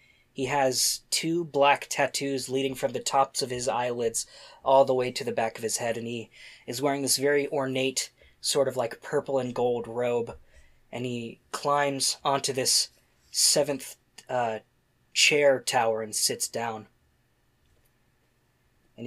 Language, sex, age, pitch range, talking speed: English, male, 20-39, 120-155 Hz, 150 wpm